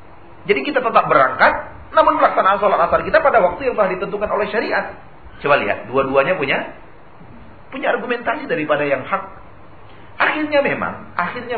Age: 40-59